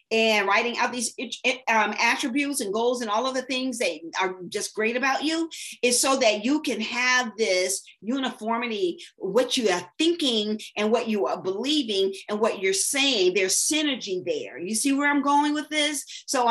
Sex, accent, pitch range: female, American, 225-300 Hz